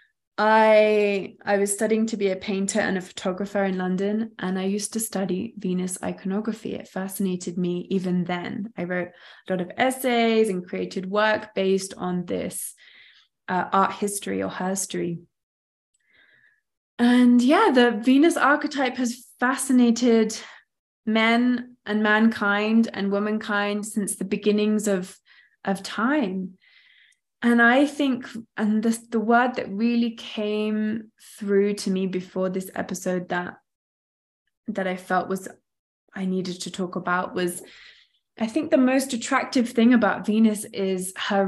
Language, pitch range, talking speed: English, 190-225 Hz, 140 wpm